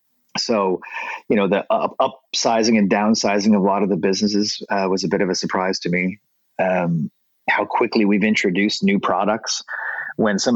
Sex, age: male, 30-49